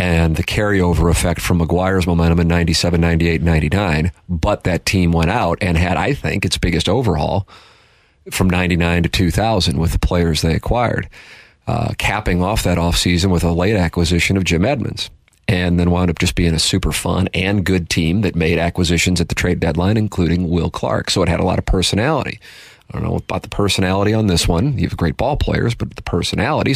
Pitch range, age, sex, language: 85-100 Hz, 40-59, male, English